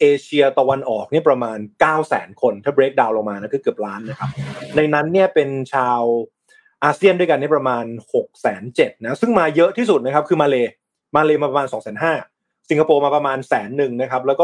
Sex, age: male, 20-39